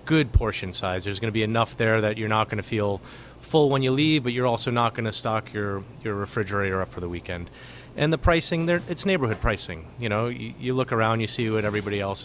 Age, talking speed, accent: 30-49, 250 wpm, American